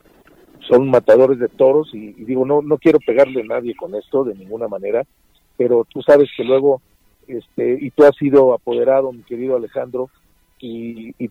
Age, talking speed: 50-69, 180 wpm